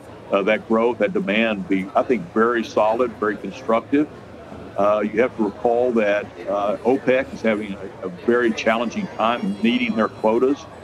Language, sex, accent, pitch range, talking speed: English, male, American, 100-115 Hz, 165 wpm